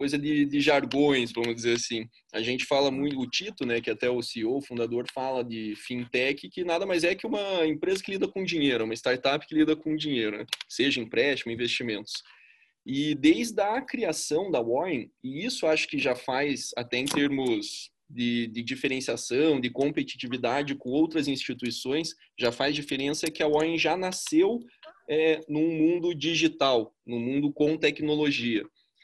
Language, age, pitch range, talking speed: Portuguese, 20-39, 130-195 Hz, 170 wpm